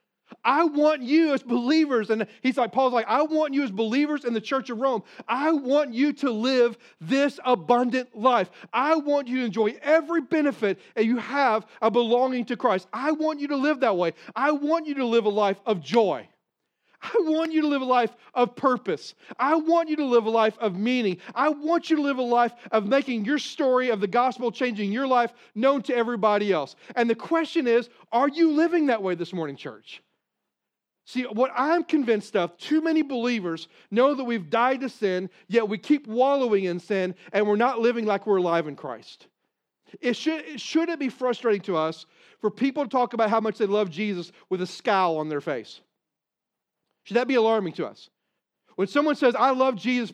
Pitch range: 210-280 Hz